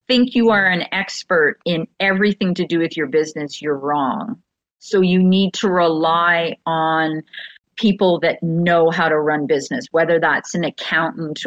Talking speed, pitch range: 160 wpm, 155-190 Hz